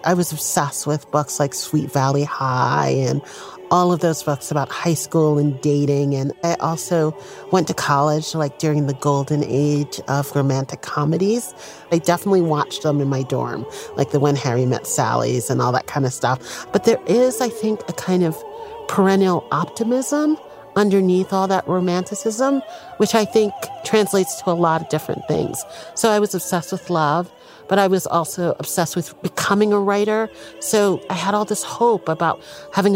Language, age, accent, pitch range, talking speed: English, 40-59, American, 155-210 Hz, 180 wpm